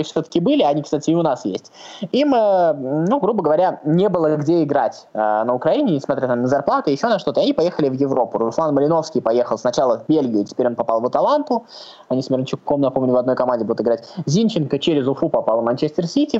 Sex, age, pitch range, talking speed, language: male, 20-39, 135-185 Hz, 210 wpm, Russian